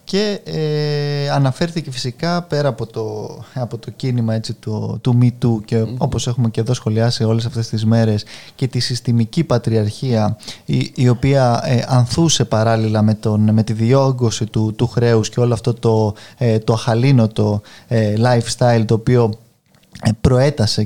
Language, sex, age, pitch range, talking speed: Greek, male, 20-39, 115-140 Hz, 135 wpm